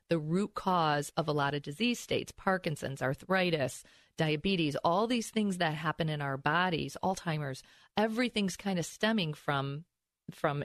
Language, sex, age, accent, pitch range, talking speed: English, female, 40-59, American, 145-190 Hz, 150 wpm